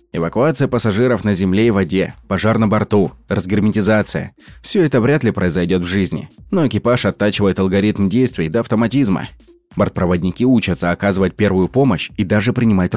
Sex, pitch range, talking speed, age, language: male, 90-115 Hz, 155 wpm, 20-39, Russian